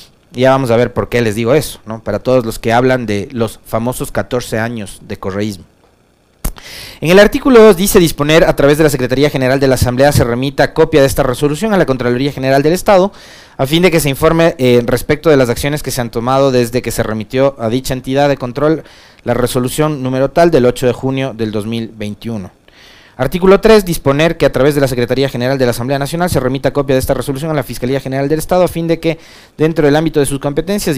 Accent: Mexican